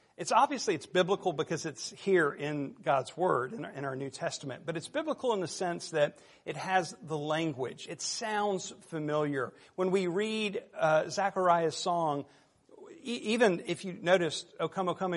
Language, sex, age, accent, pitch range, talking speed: English, male, 50-69, American, 150-180 Hz, 180 wpm